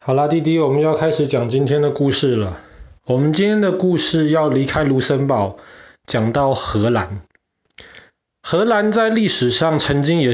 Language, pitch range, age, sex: Chinese, 110-150 Hz, 20-39, male